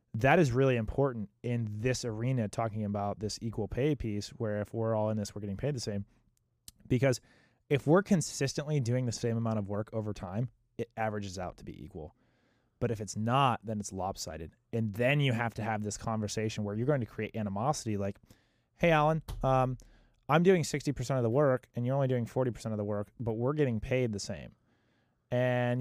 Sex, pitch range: male, 105-130 Hz